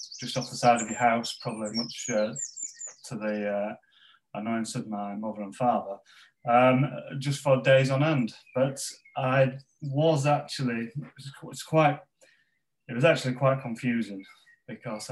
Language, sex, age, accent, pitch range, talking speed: English, male, 30-49, British, 105-130 Hz, 150 wpm